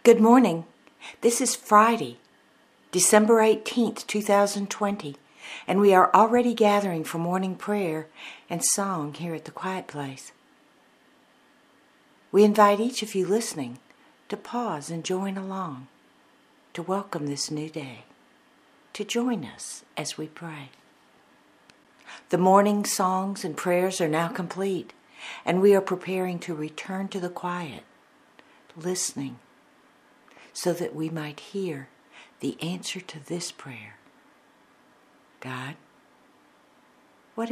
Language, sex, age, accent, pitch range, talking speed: English, female, 60-79, American, 165-250 Hz, 120 wpm